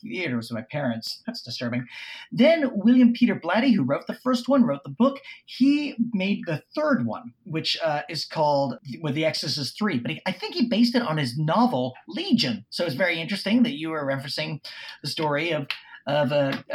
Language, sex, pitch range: English, male, 145-230 Hz